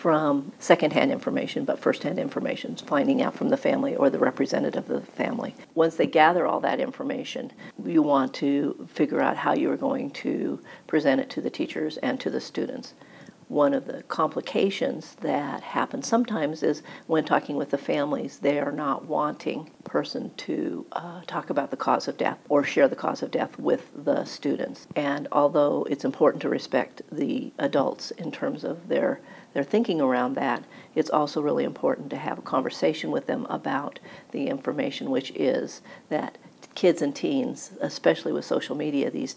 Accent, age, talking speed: American, 50-69, 180 wpm